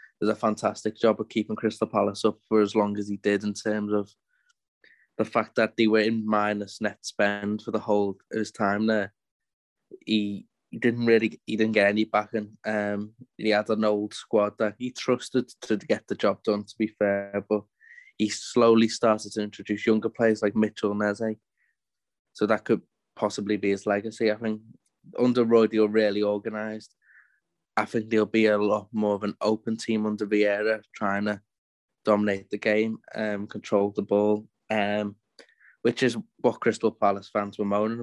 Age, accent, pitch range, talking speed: 20-39, British, 105-110 Hz, 185 wpm